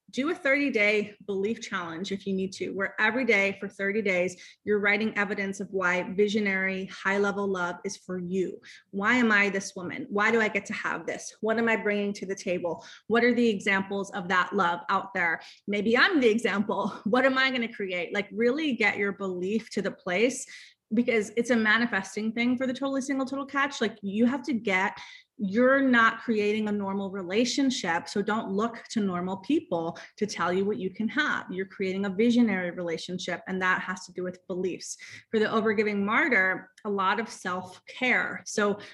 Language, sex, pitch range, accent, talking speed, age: English, female, 195-235 Hz, American, 195 wpm, 30-49